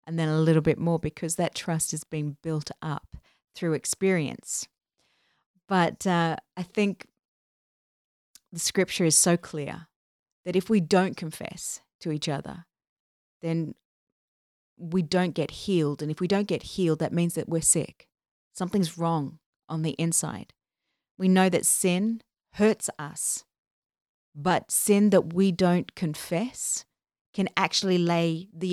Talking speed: 145 wpm